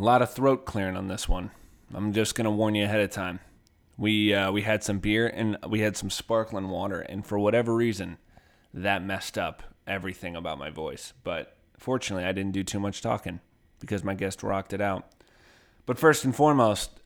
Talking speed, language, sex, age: 205 wpm, English, male, 20-39